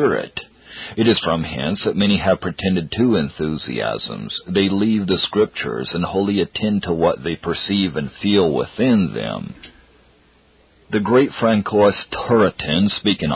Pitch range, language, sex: 90-115 Hz, English, male